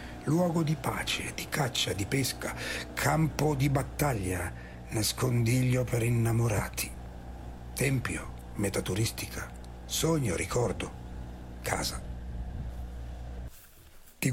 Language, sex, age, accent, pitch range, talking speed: Italian, male, 60-79, native, 95-135 Hz, 80 wpm